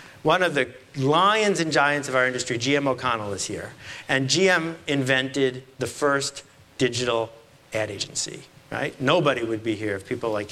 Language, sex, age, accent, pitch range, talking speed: English, male, 50-69, American, 130-200 Hz, 165 wpm